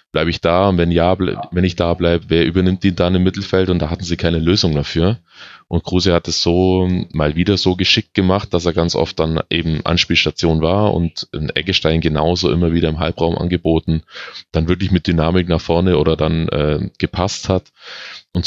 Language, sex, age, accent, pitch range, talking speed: German, male, 20-39, German, 80-95 Hz, 205 wpm